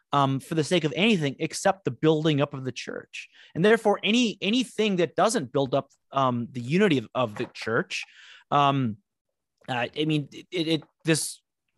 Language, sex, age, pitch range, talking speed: English, male, 30-49, 130-185 Hz, 180 wpm